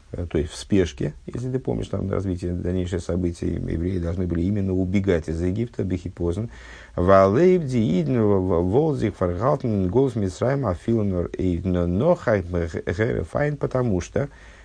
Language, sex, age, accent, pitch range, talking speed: Russian, male, 50-69, native, 85-115 Hz, 95 wpm